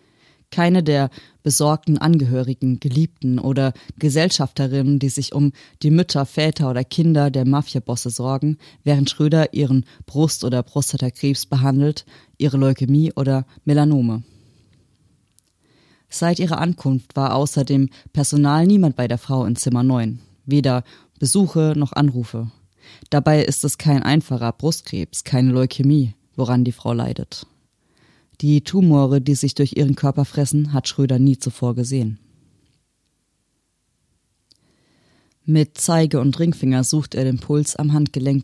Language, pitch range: German, 130-150 Hz